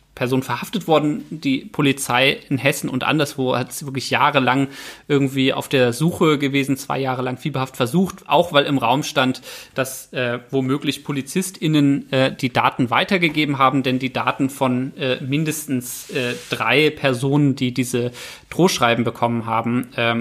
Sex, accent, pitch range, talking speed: male, German, 120-150 Hz, 155 wpm